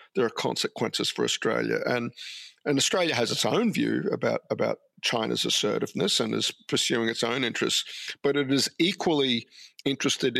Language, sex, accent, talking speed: English, male, Australian, 155 wpm